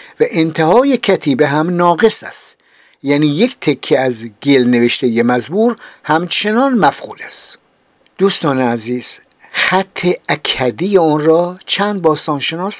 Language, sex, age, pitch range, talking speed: Persian, male, 50-69, 135-195 Hz, 115 wpm